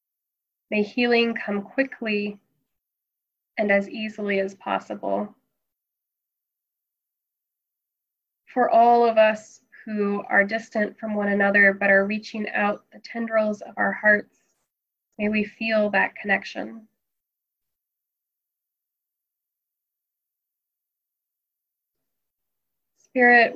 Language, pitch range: English, 200-220 Hz